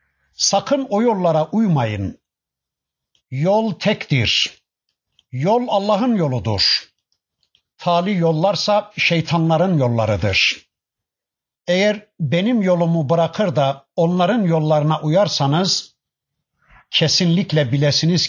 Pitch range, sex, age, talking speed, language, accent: 140-180 Hz, male, 60-79, 75 wpm, Turkish, native